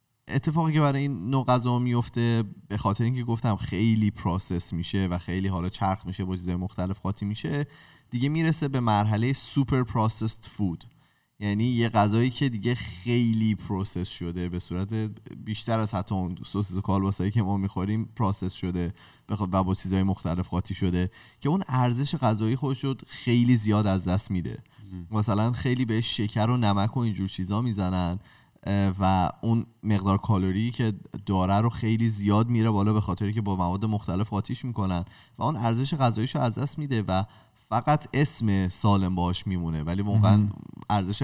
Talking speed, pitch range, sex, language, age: 170 wpm, 95-120 Hz, male, Persian, 20-39